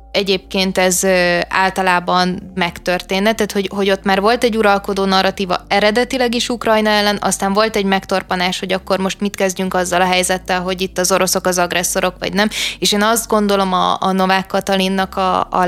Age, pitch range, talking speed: 20-39, 190-210 Hz, 180 wpm